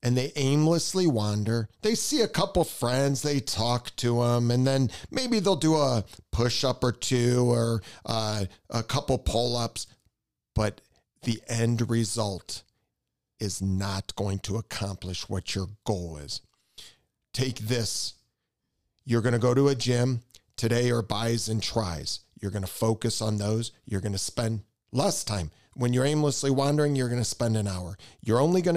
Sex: male